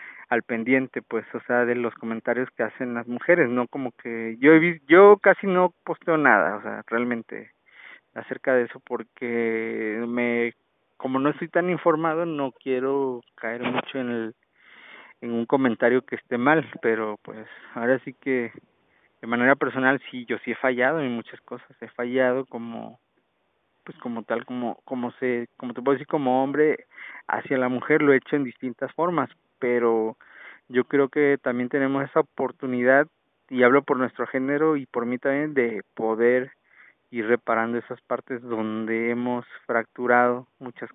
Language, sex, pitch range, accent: Spanish, male, 120-140 Hz, Mexican